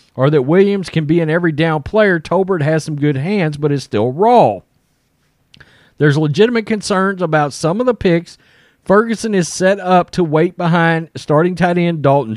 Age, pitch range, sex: 40-59, 140-180 Hz, male